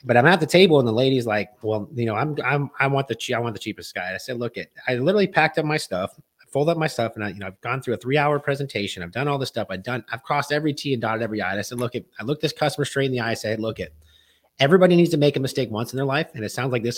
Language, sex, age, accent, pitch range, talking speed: English, male, 30-49, American, 115-150 Hz, 340 wpm